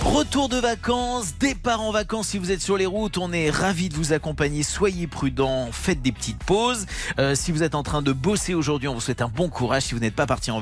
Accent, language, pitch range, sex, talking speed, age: French, French, 130-185 Hz, male, 255 wpm, 40-59